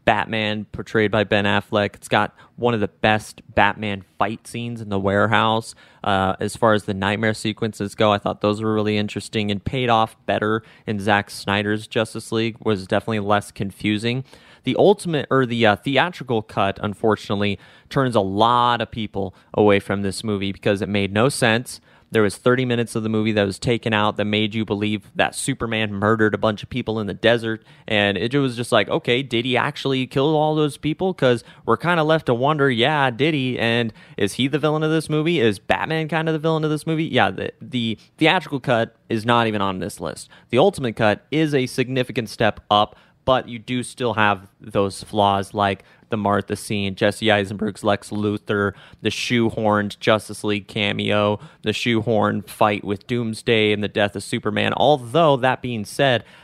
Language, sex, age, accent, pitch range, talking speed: English, male, 30-49, American, 105-125 Hz, 195 wpm